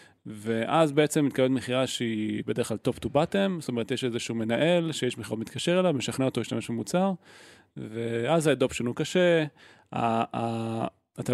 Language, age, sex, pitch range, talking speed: Hebrew, 20-39, male, 115-145 Hz, 155 wpm